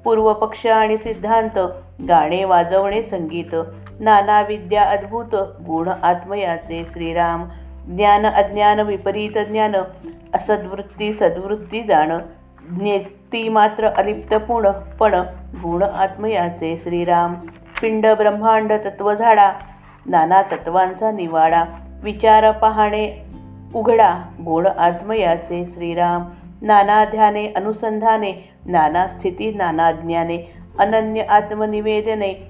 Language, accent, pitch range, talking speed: Marathi, native, 170-215 Hz, 85 wpm